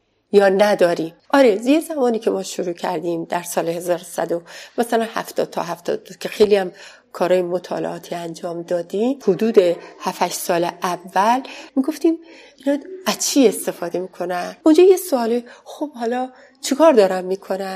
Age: 30-49